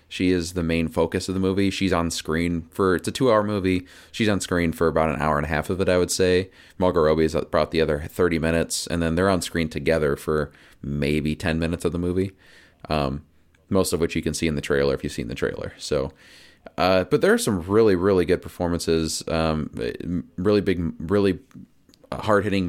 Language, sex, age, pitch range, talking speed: English, male, 30-49, 80-95 Hz, 215 wpm